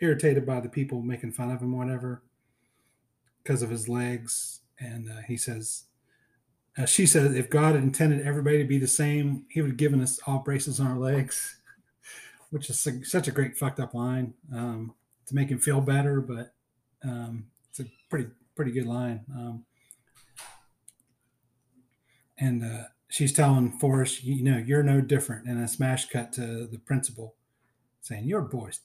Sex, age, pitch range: male, 30-49, 120-135 Hz